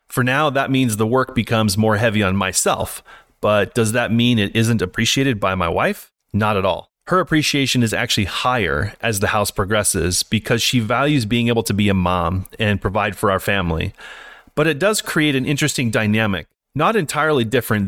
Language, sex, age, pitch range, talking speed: English, male, 30-49, 105-135 Hz, 190 wpm